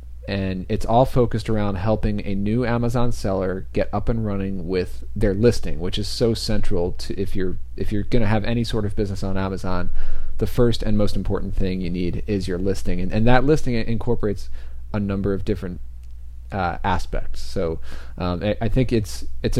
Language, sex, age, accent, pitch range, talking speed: English, male, 30-49, American, 90-110 Hz, 195 wpm